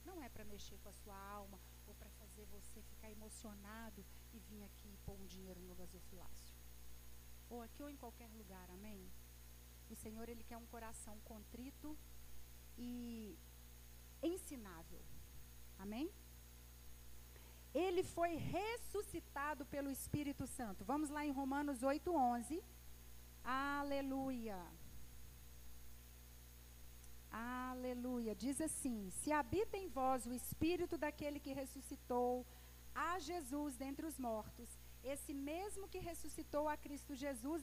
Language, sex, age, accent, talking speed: Portuguese, female, 40-59, Brazilian, 125 wpm